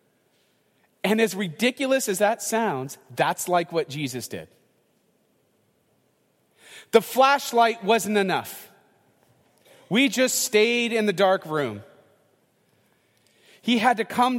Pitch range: 170-245 Hz